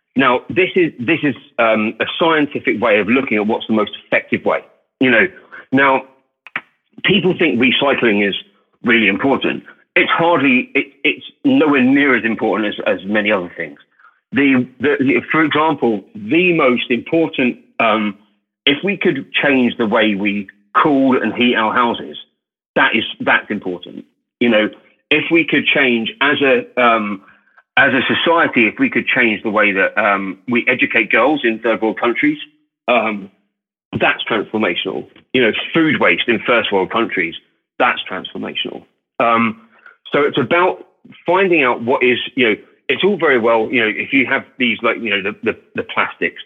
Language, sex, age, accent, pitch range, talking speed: English, male, 40-59, British, 110-155 Hz, 170 wpm